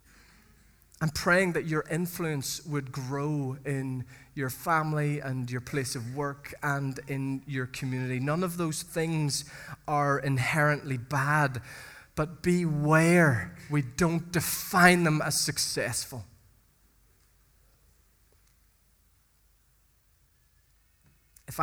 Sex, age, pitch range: male, 20-39, 120-150 Hz